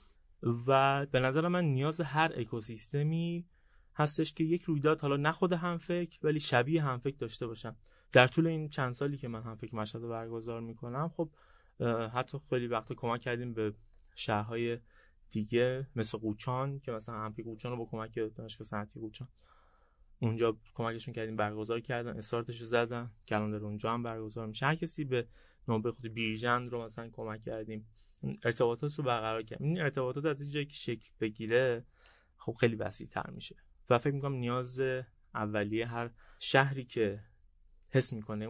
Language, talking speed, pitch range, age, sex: Persian, 155 wpm, 110-135 Hz, 30-49, male